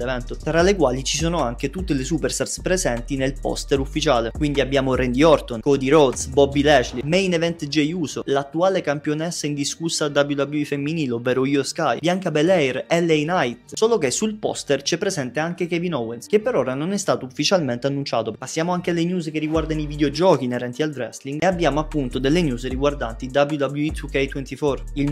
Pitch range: 135-160 Hz